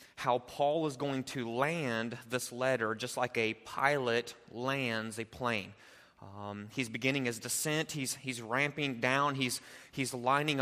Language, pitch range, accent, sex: English, 125-165 Hz, American, male